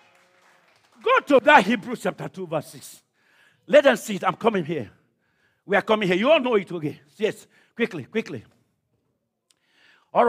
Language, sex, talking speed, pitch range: English, male, 170 wpm, 195-325 Hz